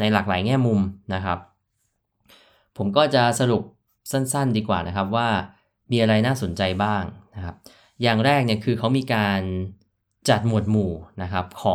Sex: male